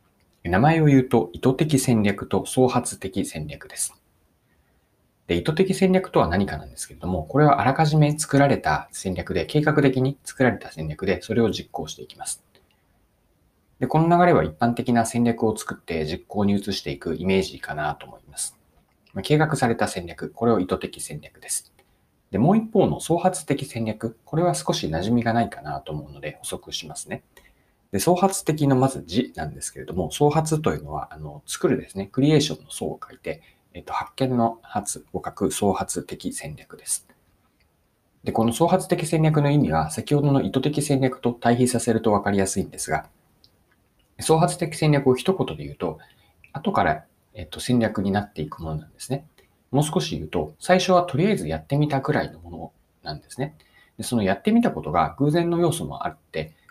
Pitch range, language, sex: 95-155 Hz, Japanese, male